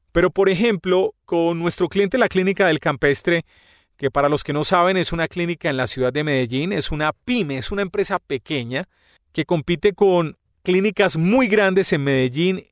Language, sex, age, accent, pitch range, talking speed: Spanish, male, 40-59, Colombian, 155-205 Hz, 185 wpm